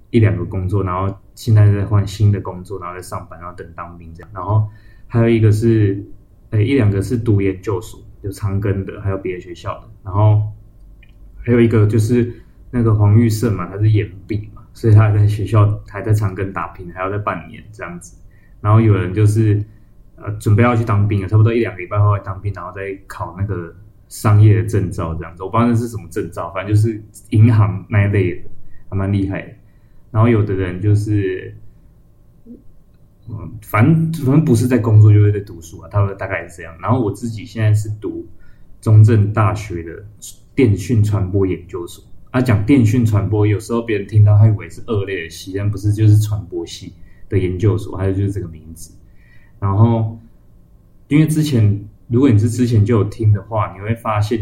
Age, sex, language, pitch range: 20-39, male, Chinese, 95-110 Hz